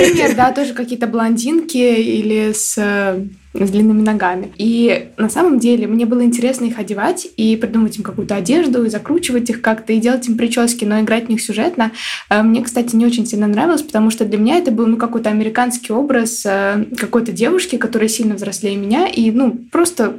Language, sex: Russian, female